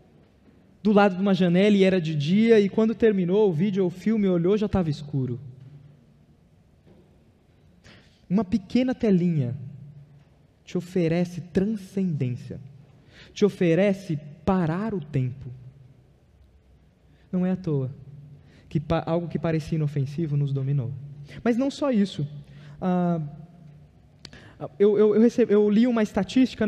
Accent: Brazilian